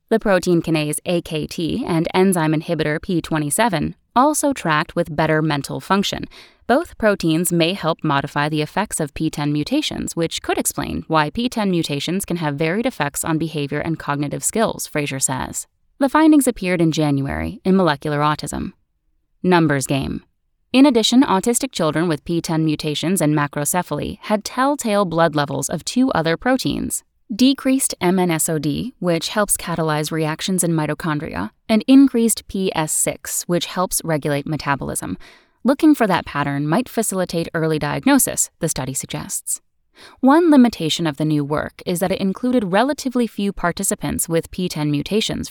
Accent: American